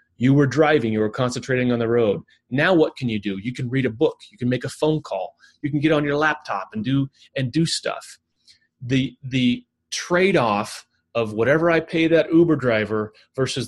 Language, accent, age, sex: English, American, 30-49, male